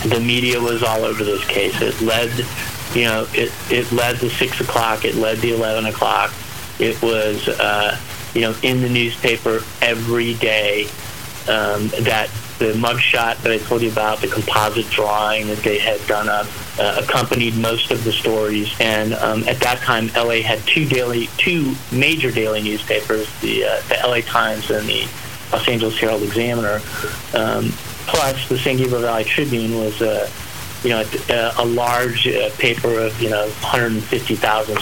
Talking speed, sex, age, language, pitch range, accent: 170 wpm, male, 40-59, English, 110-125 Hz, American